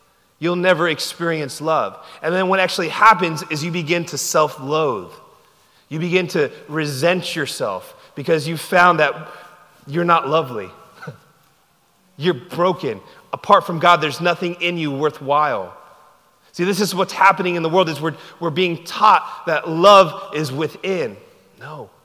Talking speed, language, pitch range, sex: 145 wpm, English, 155-190 Hz, male